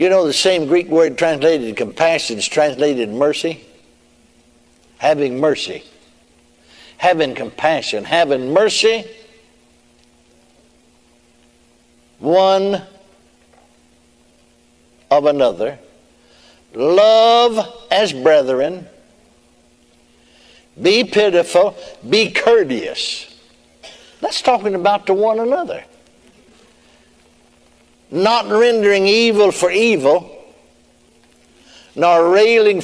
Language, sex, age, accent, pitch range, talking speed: English, male, 60-79, American, 155-220 Hz, 75 wpm